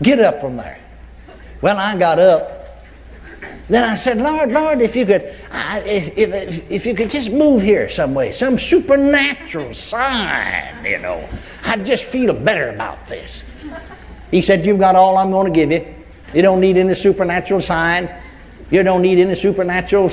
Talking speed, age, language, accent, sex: 175 wpm, 60-79, English, American, male